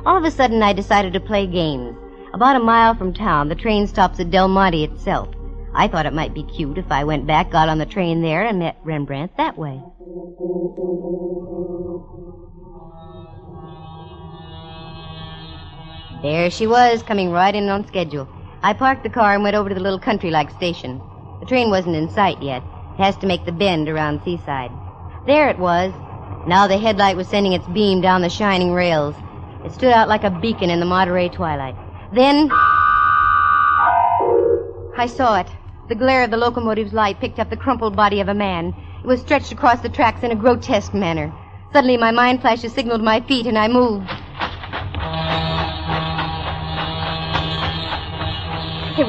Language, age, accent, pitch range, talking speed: English, 50-69, American, 145-235 Hz, 170 wpm